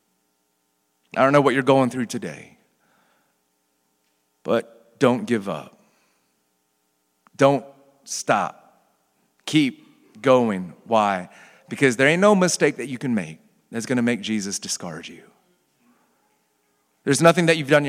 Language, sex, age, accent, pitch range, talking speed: English, male, 40-59, American, 100-145 Hz, 130 wpm